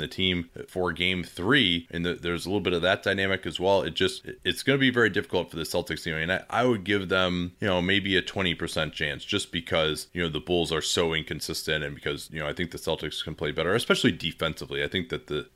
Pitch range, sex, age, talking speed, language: 85-120 Hz, male, 30-49, 260 wpm, English